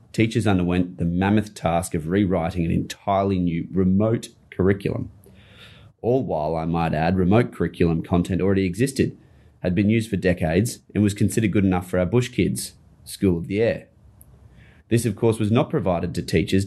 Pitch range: 90-110 Hz